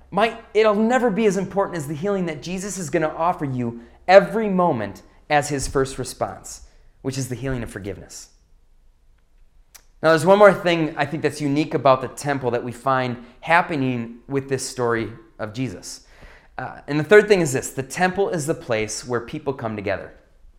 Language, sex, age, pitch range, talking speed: English, male, 30-49, 115-175 Hz, 190 wpm